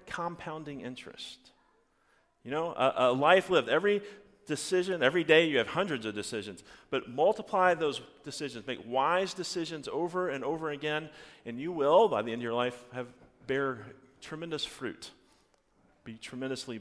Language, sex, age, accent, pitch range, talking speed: English, male, 40-59, American, 125-185 Hz, 155 wpm